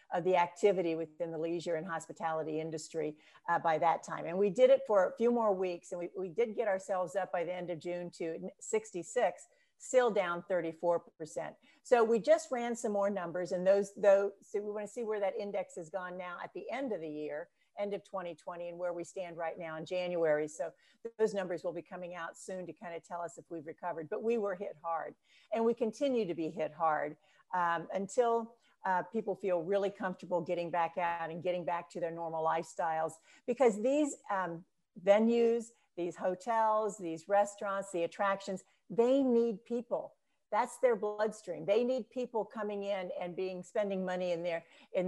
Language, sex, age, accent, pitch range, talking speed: English, female, 50-69, American, 170-215 Hz, 200 wpm